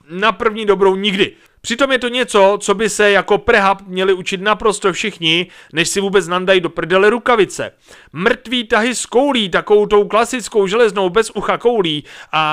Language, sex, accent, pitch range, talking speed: Czech, male, native, 180-220 Hz, 170 wpm